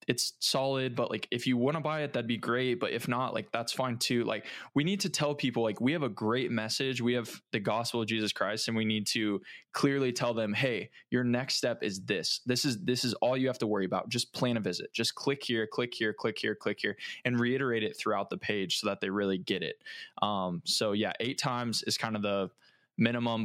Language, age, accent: English, 20-39, American